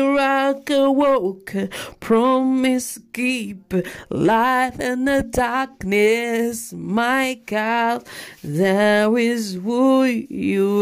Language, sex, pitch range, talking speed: French, female, 225-275 Hz, 80 wpm